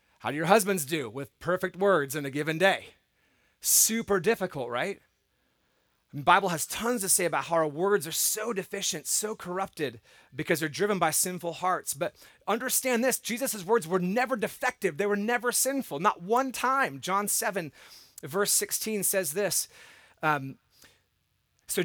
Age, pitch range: 30-49, 165-215 Hz